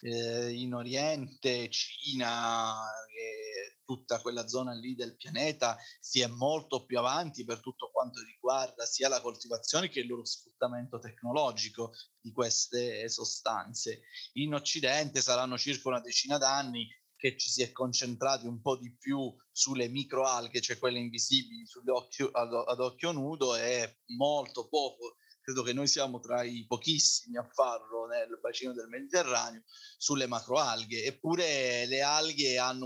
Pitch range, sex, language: 120-140 Hz, male, Italian